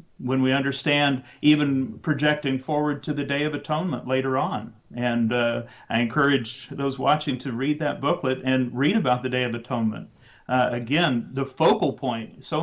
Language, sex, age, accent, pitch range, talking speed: English, male, 50-69, American, 125-150 Hz, 170 wpm